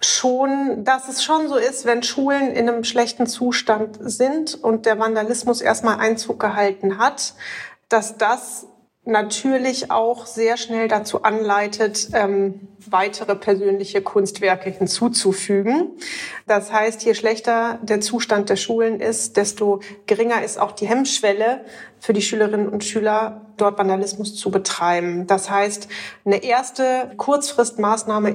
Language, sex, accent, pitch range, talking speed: German, female, German, 215-250 Hz, 130 wpm